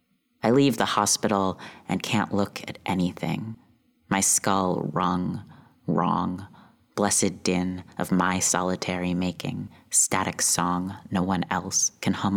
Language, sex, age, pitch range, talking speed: English, female, 30-49, 90-110 Hz, 125 wpm